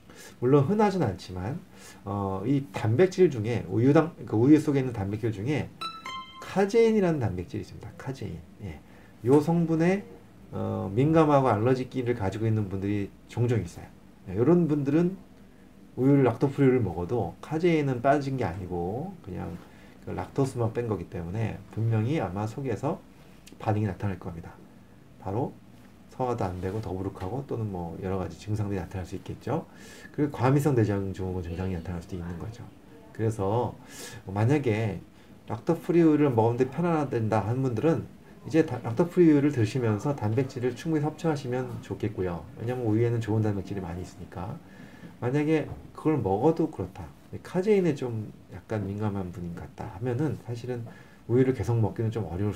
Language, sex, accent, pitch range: Korean, male, native, 95-140 Hz